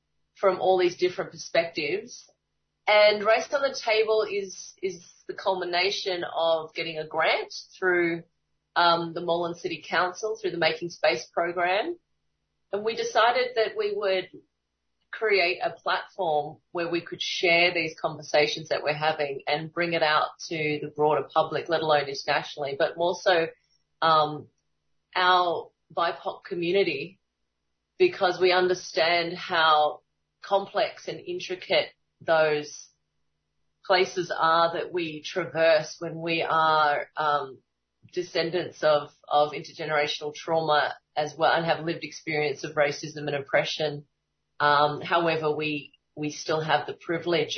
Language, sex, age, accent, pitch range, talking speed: English, female, 30-49, Australian, 150-185 Hz, 130 wpm